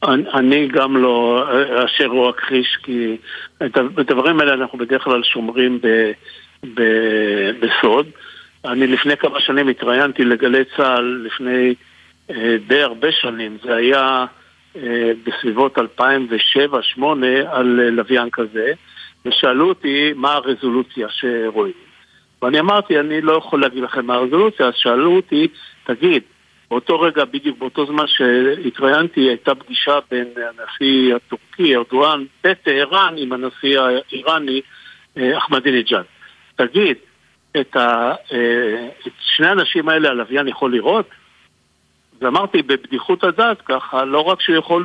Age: 60-79